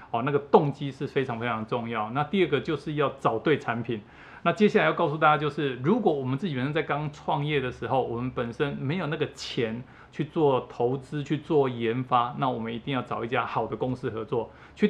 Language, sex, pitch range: Chinese, male, 125-165 Hz